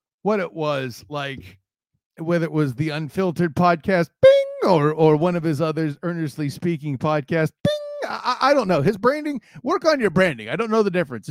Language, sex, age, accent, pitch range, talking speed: English, male, 40-59, American, 130-185 Hz, 190 wpm